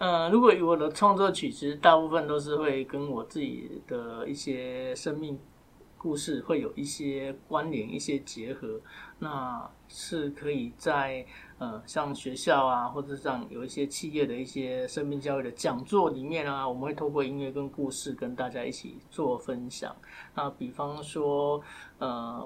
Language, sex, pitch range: Chinese, male, 135-155 Hz